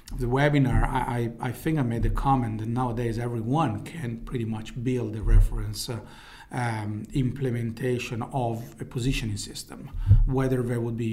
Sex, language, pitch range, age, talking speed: male, English, 115-135 Hz, 40-59, 155 wpm